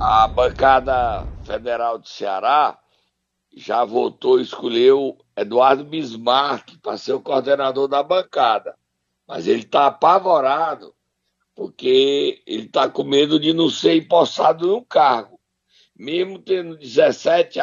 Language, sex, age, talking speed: Portuguese, male, 60-79, 120 wpm